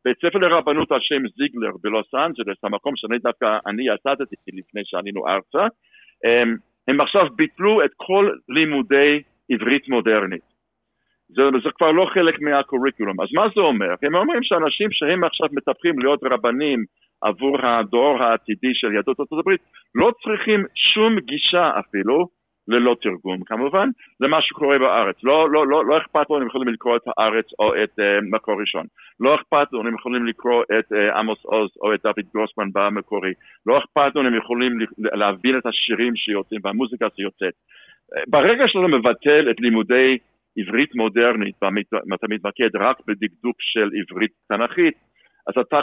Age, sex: 60-79, male